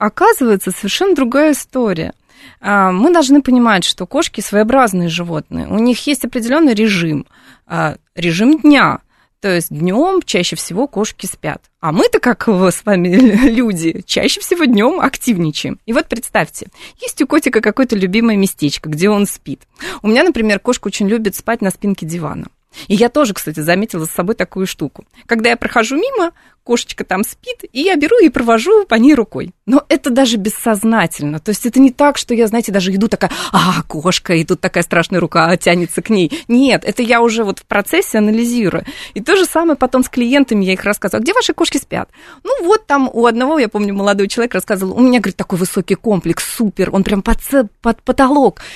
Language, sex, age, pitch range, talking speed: Russian, female, 20-39, 195-260 Hz, 185 wpm